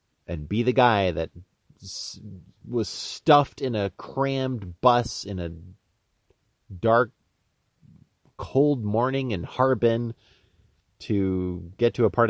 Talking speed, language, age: 110 wpm, English, 30-49